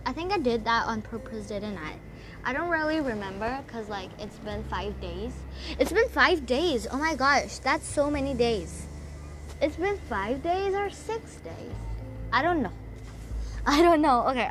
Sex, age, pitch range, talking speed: female, 20-39, 235-305 Hz, 180 wpm